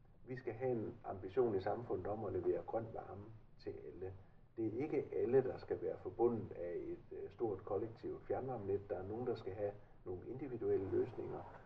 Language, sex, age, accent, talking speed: Danish, male, 60-79, native, 185 wpm